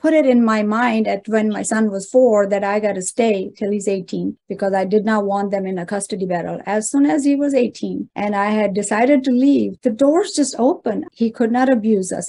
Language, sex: English, female